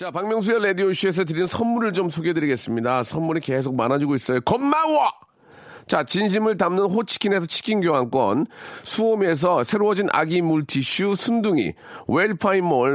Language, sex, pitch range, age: Korean, male, 165-210 Hz, 40-59